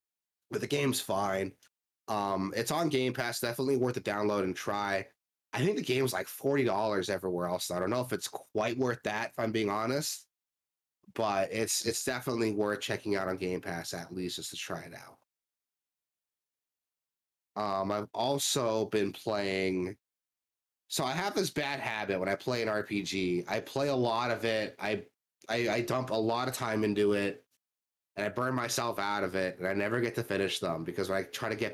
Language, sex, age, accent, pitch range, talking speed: English, male, 30-49, American, 95-120 Hz, 195 wpm